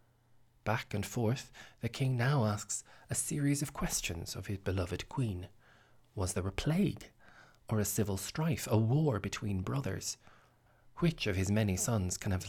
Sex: male